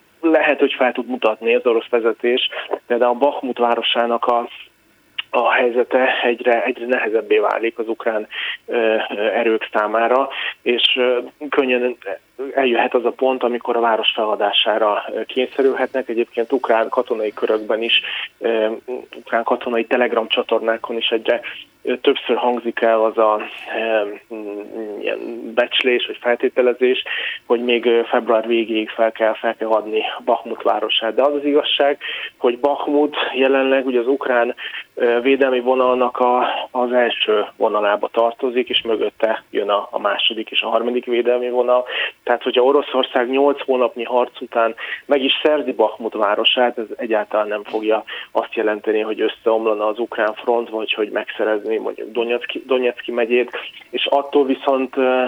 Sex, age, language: male, 20-39, Hungarian